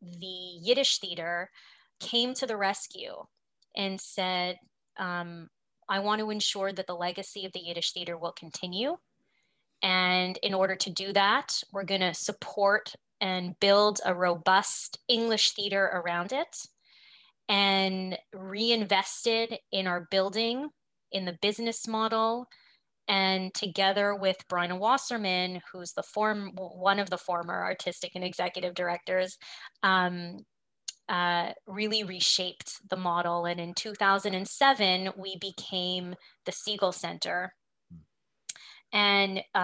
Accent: American